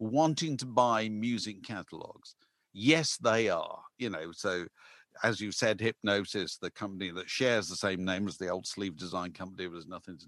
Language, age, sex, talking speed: English, 50-69, male, 195 wpm